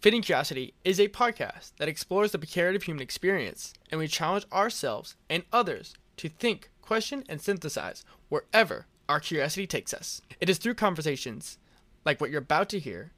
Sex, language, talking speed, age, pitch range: male, English, 170 wpm, 20-39, 135-185 Hz